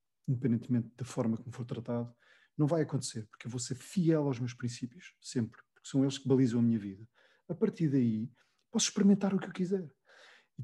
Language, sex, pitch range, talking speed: Portuguese, male, 120-155 Hz, 205 wpm